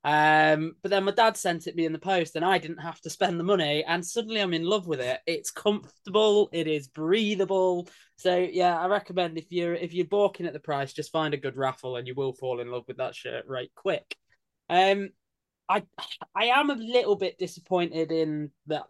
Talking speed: 220 wpm